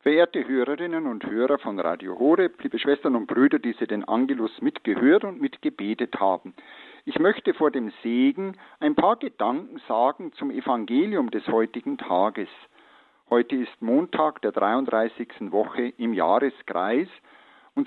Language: German